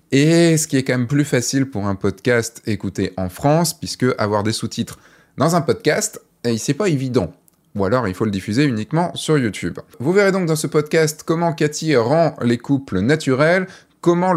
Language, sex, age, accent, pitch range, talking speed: French, male, 20-39, French, 120-155 Hz, 190 wpm